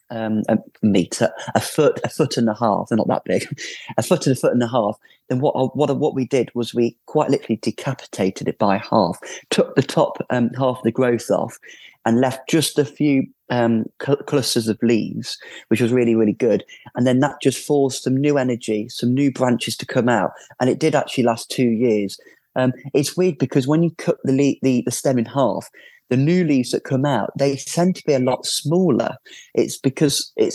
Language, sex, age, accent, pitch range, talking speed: English, male, 30-49, British, 115-145 Hz, 220 wpm